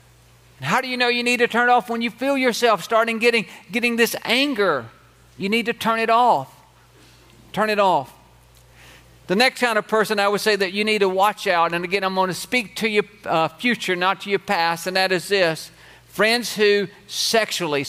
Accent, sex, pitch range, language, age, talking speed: American, male, 150-215 Hz, English, 50-69, 210 wpm